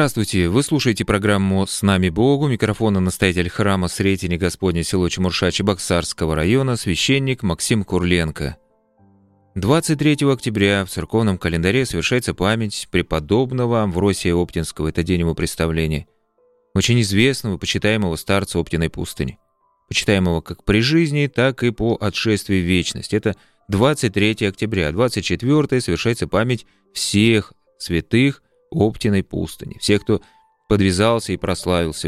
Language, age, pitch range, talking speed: Russian, 30-49, 90-115 Hz, 120 wpm